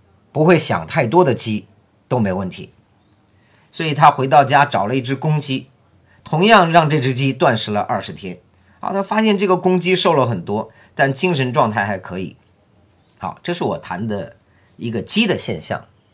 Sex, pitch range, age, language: male, 105-150 Hz, 50-69, Chinese